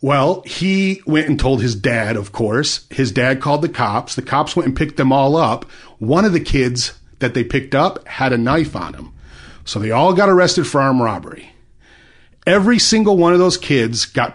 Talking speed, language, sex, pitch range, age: 210 wpm, English, male, 115-155 Hz, 30-49